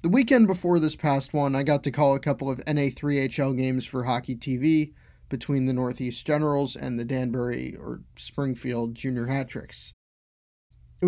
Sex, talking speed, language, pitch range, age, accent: male, 160 wpm, English, 125-150 Hz, 20-39, American